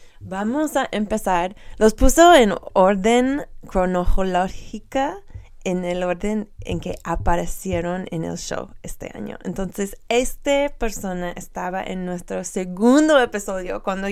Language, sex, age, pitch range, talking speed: Spanish, female, 20-39, 175-210 Hz, 120 wpm